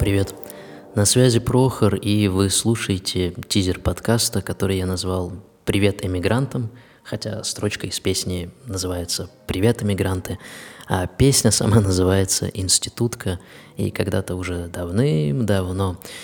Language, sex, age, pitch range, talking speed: Russian, male, 20-39, 90-105 Hz, 110 wpm